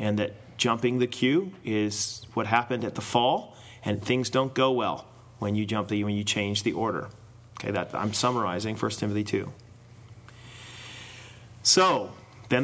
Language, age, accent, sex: English, 30-49, American, male